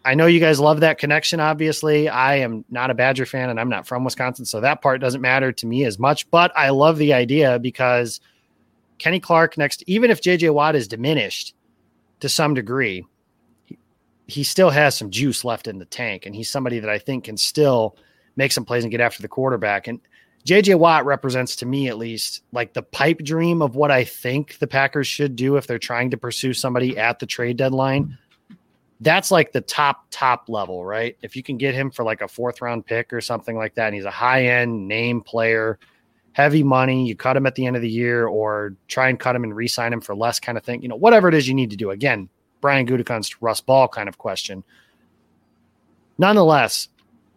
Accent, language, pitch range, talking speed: American, English, 115-145 Hz, 215 wpm